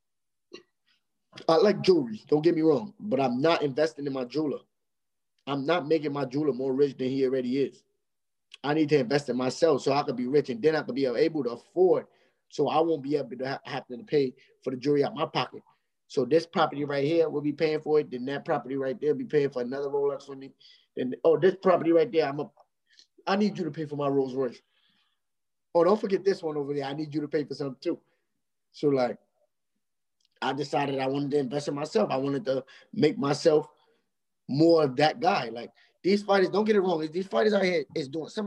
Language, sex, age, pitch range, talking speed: English, male, 20-39, 140-175 Hz, 230 wpm